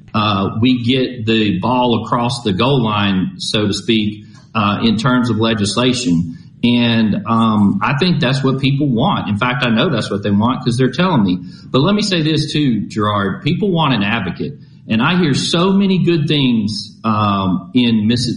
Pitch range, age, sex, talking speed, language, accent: 110-135 Hz, 40-59, male, 190 wpm, English, American